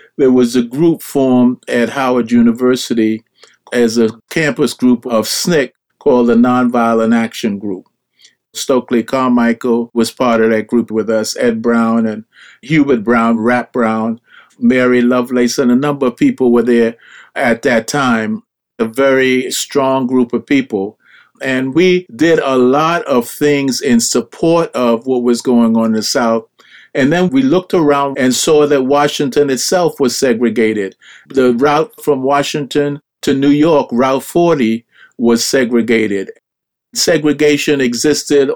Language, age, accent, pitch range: English, 50-69, American, 120-145 Hz